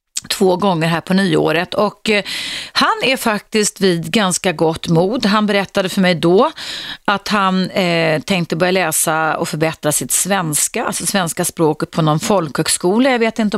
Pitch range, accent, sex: 165-215 Hz, native, female